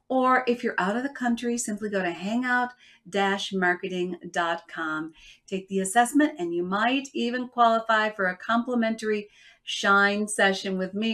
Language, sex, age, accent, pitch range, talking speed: English, female, 50-69, American, 190-245 Hz, 140 wpm